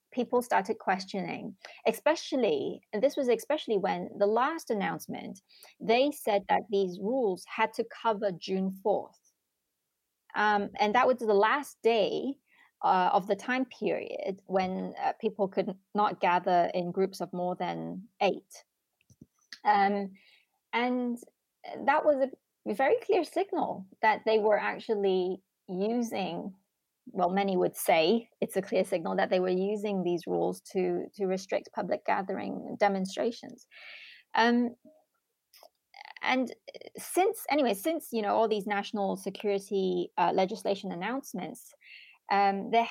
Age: 20-39